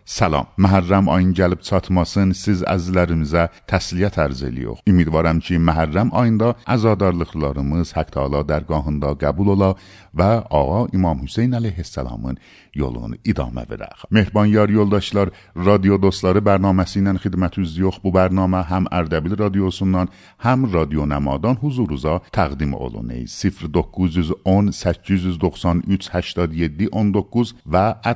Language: Persian